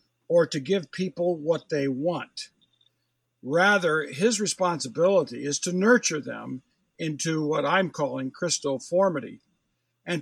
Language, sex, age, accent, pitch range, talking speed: English, male, 60-79, American, 145-195 Hz, 125 wpm